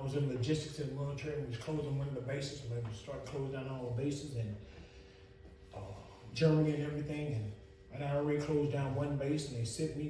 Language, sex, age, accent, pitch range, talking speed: English, male, 30-49, American, 100-160 Hz, 250 wpm